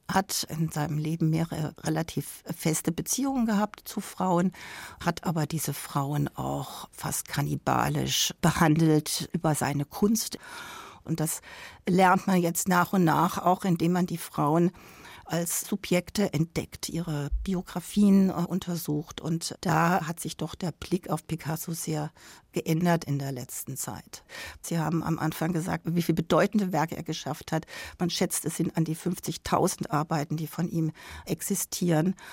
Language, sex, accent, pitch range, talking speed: German, female, German, 155-180 Hz, 150 wpm